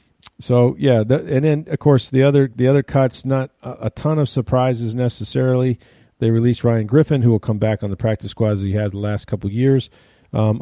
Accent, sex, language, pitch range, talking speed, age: American, male, English, 105-125 Hz, 225 wpm, 40-59